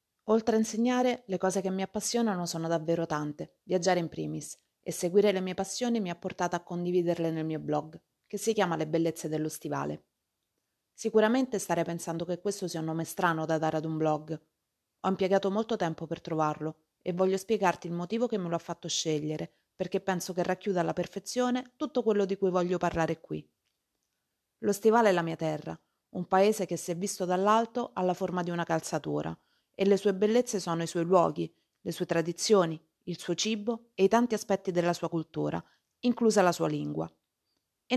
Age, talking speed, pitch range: 30-49, 195 wpm, 165-210 Hz